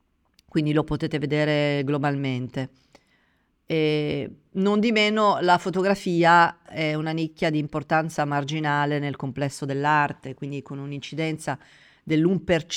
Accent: native